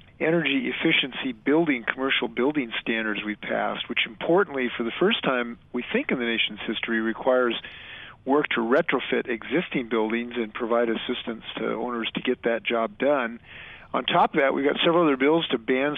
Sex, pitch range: male, 115-135 Hz